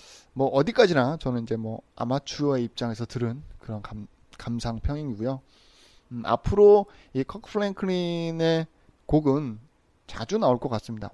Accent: native